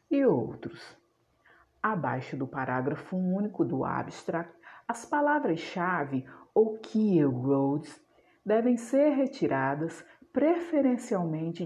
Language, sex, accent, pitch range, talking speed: Portuguese, female, Brazilian, 155-260 Hz, 80 wpm